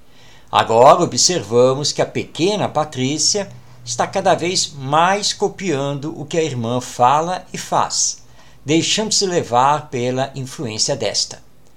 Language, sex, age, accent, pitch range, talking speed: Portuguese, male, 60-79, Brazilian, 130-185 Hz, 115 wpm